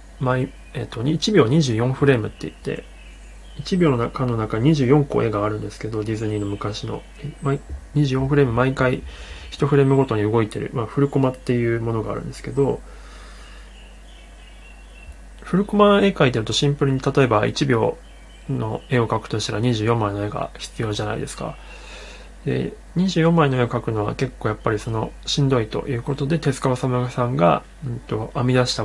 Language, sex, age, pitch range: Japanese, male, 20-39, 105-140 Hz